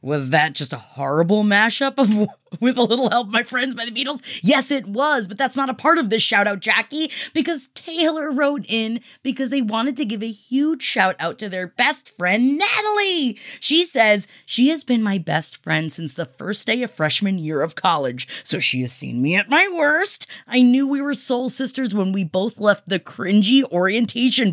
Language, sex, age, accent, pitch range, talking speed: English, female, 20-39, American, 190-285 Hz, 205 wpm